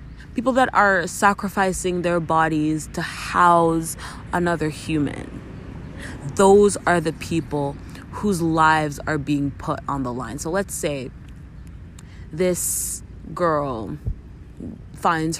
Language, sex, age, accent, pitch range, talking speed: English, female, 20-39, American, 145-180 Hz, 110 wpm